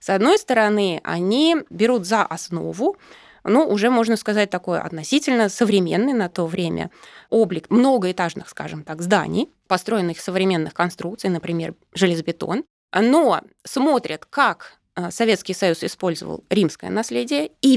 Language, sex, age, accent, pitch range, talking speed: Russian, female, 20-39, native, 180-245 Hz, 125 wpm